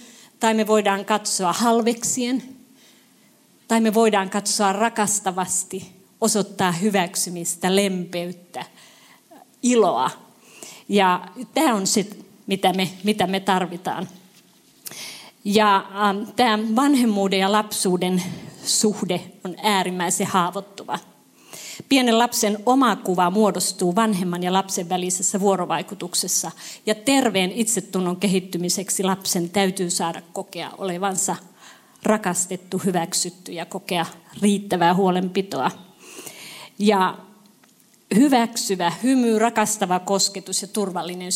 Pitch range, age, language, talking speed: 185-215 Hz, 30-49, Finnish, 90 wpm